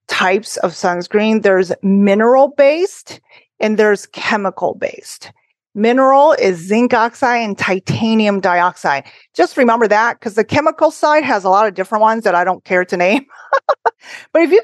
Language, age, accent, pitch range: English, 30-49, American, 190-240 Hz